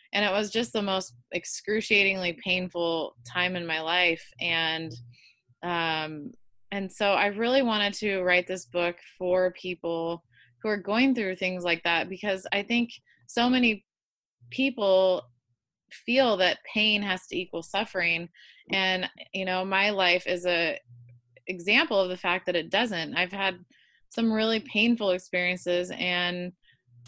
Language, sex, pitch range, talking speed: English, female, 170-205 Hz, 145 wpm